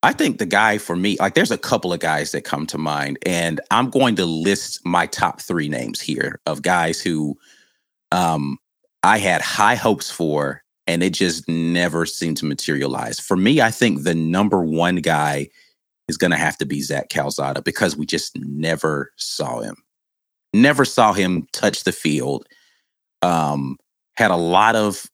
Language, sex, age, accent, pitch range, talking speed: English, male, 30-49, American, 85-105 Hz, 180 wpm